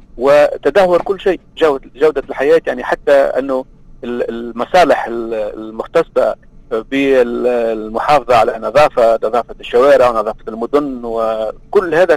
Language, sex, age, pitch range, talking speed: Arabic, male, 40-59, 135-185 Hz, 95 wpm